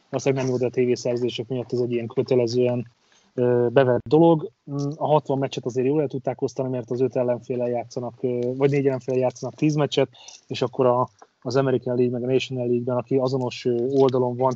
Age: 30-49